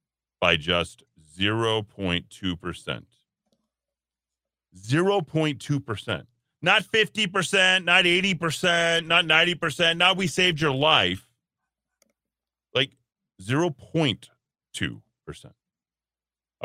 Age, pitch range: 40-59, 90-145 Hz